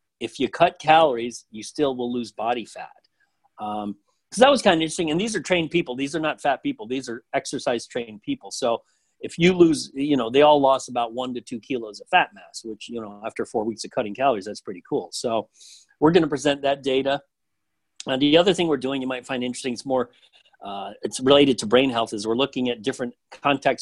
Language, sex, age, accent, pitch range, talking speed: English, male, 40-59, American, 120-150 Hz, 230 wpm